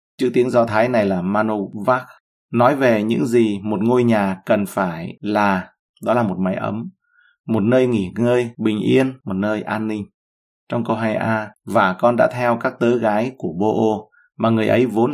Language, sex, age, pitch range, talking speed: Vietnamese, male, 20-39, 100-120 Hz, 190 wpm